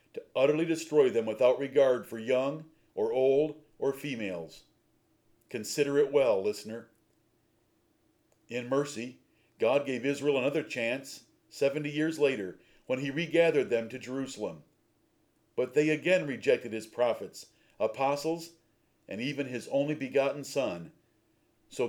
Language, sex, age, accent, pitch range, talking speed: English, male, 50-69, American, 125-155 Hz, 125 wpm